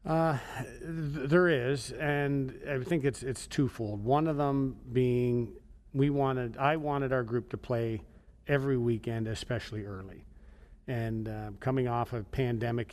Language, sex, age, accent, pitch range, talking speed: English, male, 40-59, American, 115-135 Hz, 145 wpm